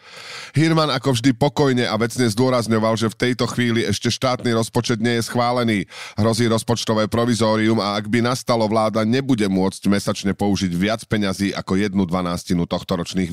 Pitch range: 95-120 Hz